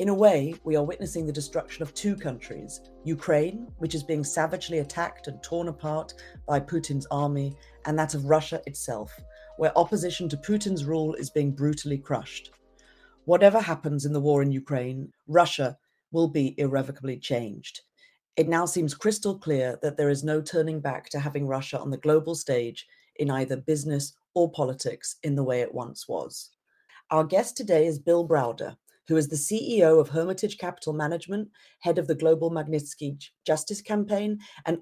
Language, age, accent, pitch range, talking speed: English, 40-59, British, 140-175 Hz, 170 wpm